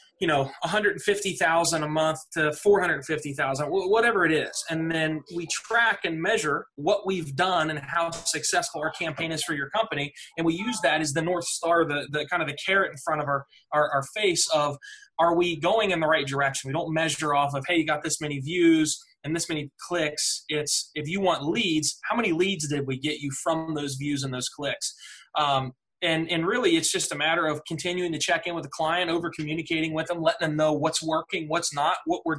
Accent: American